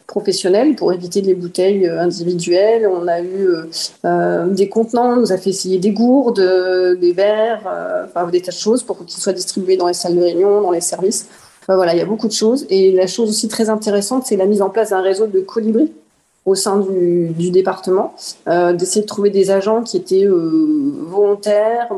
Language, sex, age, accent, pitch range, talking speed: French, female, 30-49, French, 180-225 Hz, 210 wpm